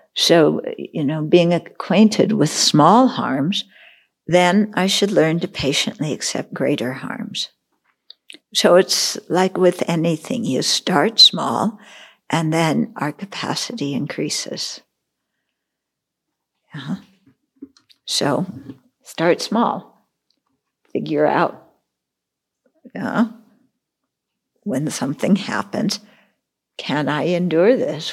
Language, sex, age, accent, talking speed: English, female, 60-79, American, 95 wpm